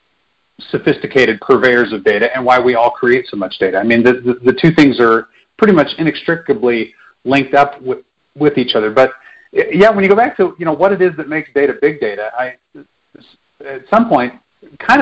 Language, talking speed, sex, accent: English, 205 wpm, male, American